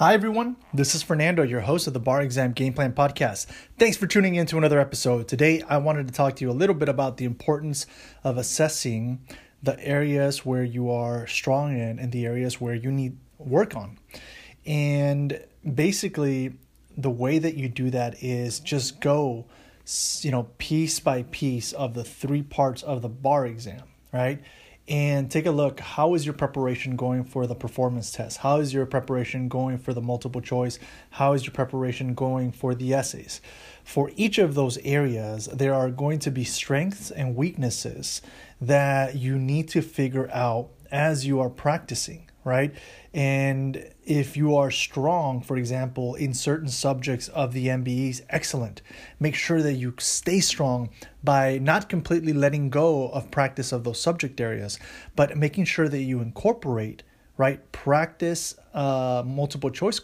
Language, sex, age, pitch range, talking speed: English, male, 30-49, 125-150 Hz, 175 wpm